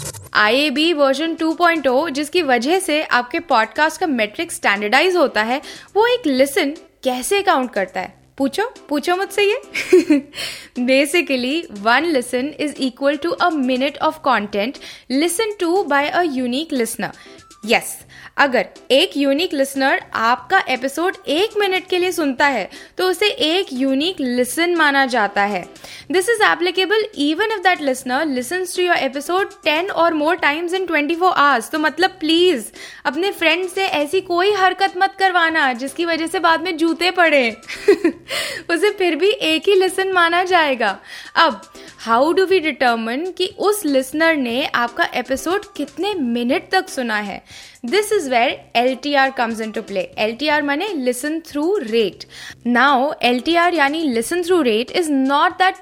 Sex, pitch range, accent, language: female, 260-360 Hz, native, Hindi